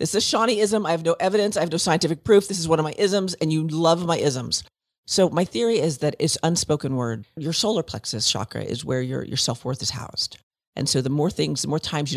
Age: 40-59